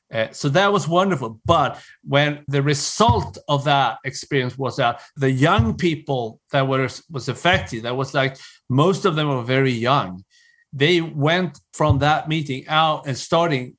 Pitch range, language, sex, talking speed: 135-170 Hz, English, male, 165 wpm